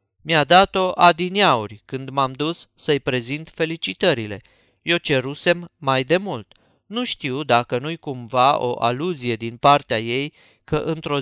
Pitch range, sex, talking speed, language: 120-170 Hz, male, 140 wpm, Romanian